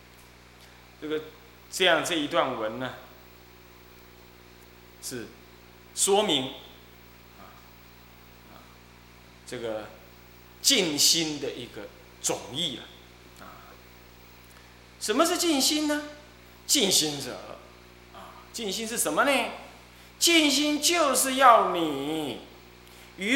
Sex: male